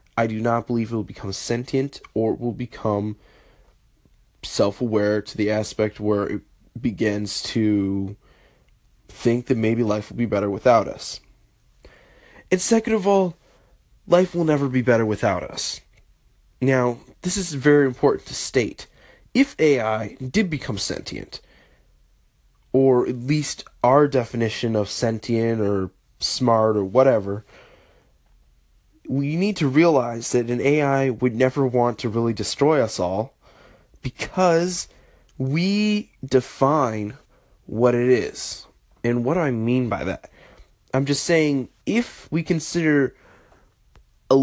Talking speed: 130 wpm